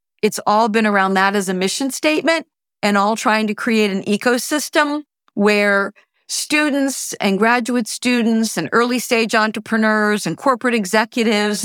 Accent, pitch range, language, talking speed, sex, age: American, 190-225 Hz, English, 140 wpm, female, 50-69